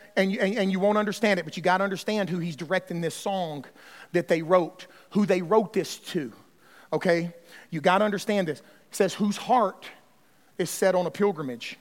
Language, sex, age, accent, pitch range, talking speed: English, male, 40-59, American, 180-235 Hz, 200 wpm